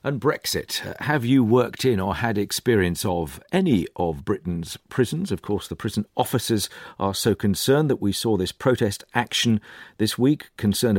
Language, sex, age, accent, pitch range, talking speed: English, male, 50-69, British, 100-135 Hz, 170 wpm